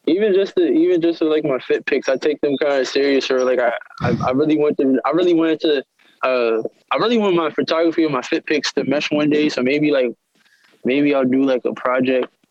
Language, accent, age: English, American, 20-39